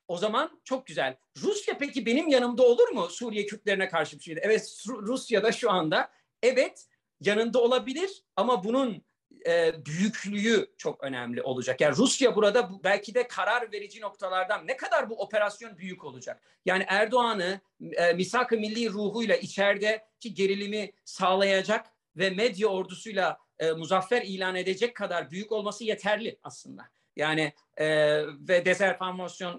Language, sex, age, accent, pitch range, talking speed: Turkish, male, 50-69, native, 185-235 Hz, 140 wpm